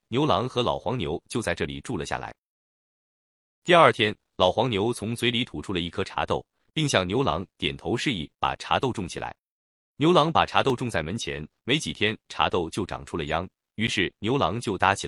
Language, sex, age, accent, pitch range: Chinese, male, 30-49, native, 85-125 Hz